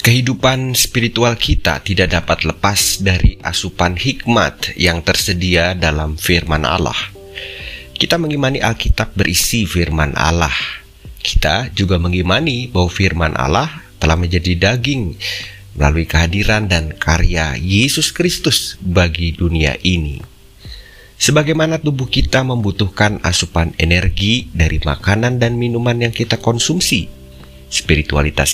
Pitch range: 85-115 Hz